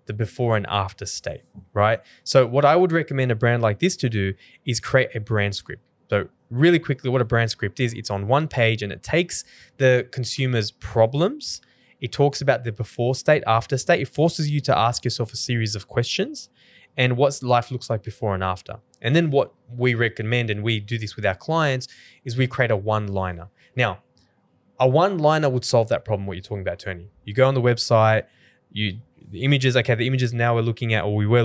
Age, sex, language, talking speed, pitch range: 20-39, male, English, 215 wpm, 105-130 Hz